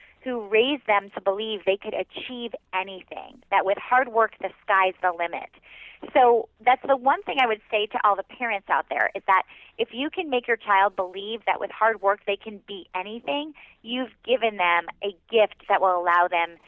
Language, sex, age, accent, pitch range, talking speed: English, female, 30-49, American, 195-275 Hz, 205 wpm